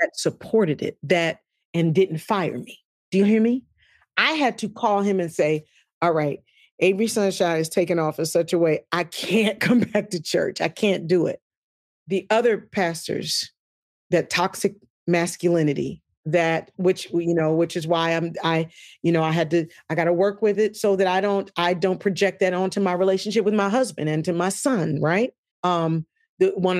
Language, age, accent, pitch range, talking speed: English, 40-59, American, 165-205 Hz, 195 wpm